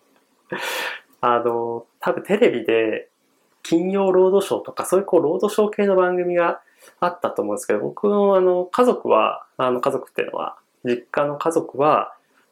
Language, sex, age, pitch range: Japanese, male, 20-39, 160-255 Hz